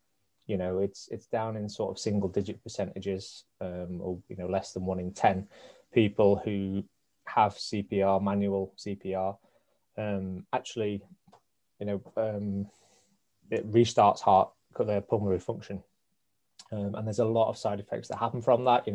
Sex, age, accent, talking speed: male, 20-39, British, 160 wpm